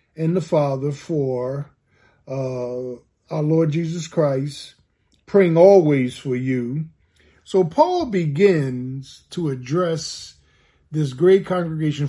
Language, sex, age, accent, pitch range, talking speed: English, male, 50-69, American, 135-175 Hz, 105 wpm